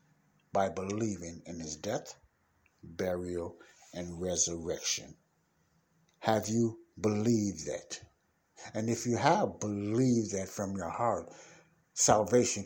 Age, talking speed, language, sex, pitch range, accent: 60-79, 105 wpm, English, male, 95-125 Hz, American